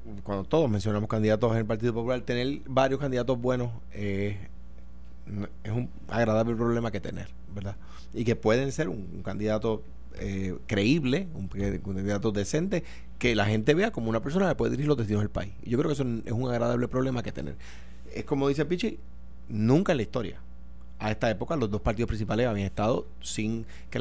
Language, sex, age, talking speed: Spanish, male, 30-49, 190 wpm